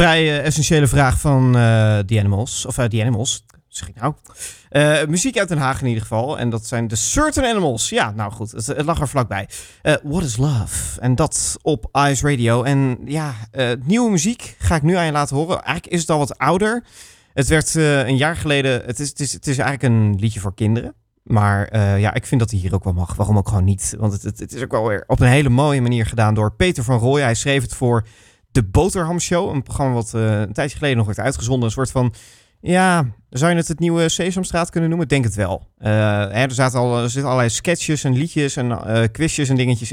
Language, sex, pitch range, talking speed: Dutch, male, 110-150 Hz, 235 wpm